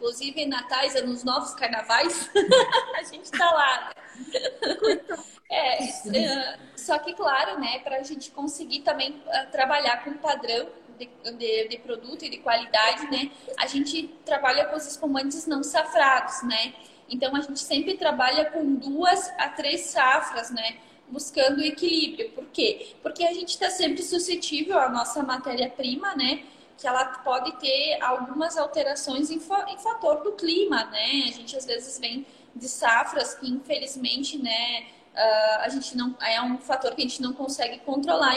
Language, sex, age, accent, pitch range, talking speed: Portuguese, female, 10-29, Brazilian, 250-315 Hz, 155 wpm